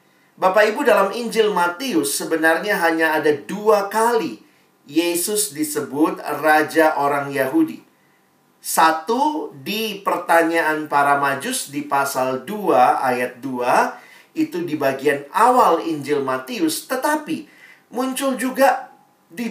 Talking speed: 110 wpm